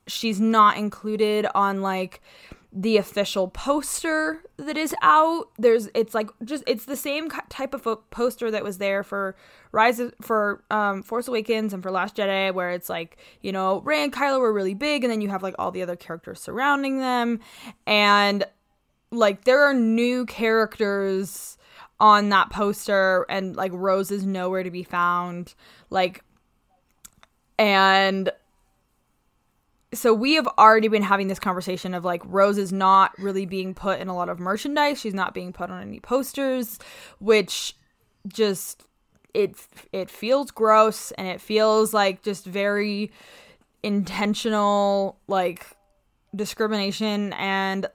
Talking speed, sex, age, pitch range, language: 150 wpm, female, 20-39, 190-225 Hz, English